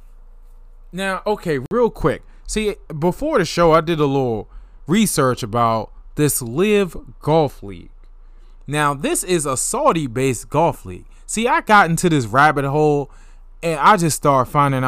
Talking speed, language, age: 150 wpm, English, 20-39